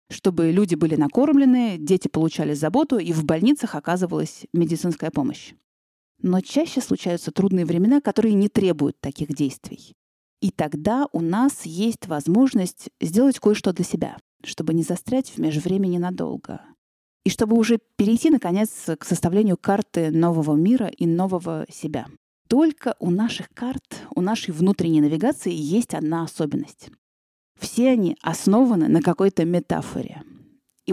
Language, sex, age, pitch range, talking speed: Russian, female, 30-49, 165-230 Hz, 135 wpm